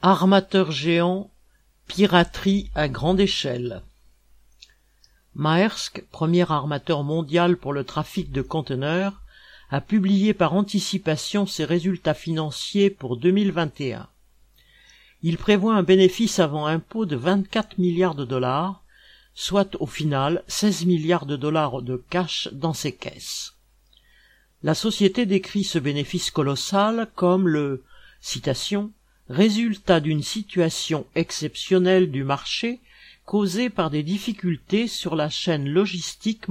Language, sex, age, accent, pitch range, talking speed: French, male, 50-69, French, 150-200 Hz, 115 wpm